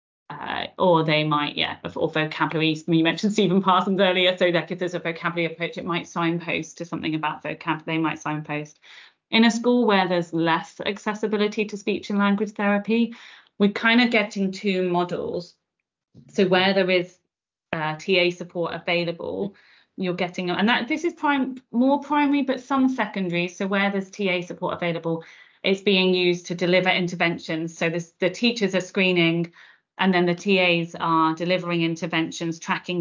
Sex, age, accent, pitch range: female, 30-49, British, 170-200 Hz